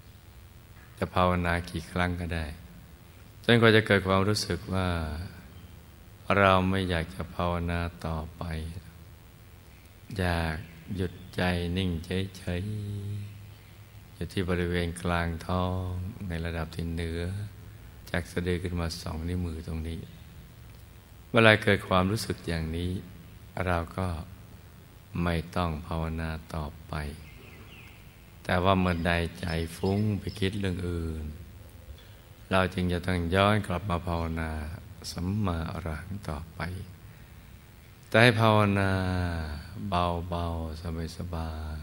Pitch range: 85-95 Hz